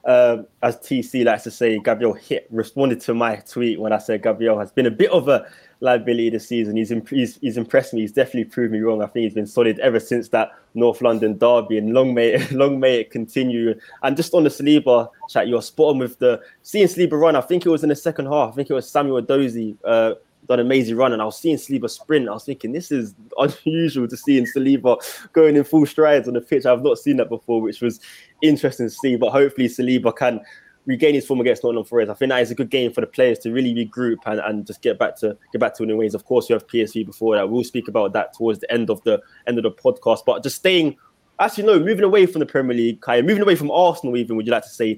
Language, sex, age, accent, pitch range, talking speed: English, male, 20-39, British, 115-150 Hz, 265 wpm